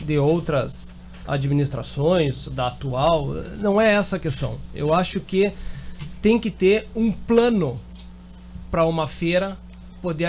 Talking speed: 130 wpm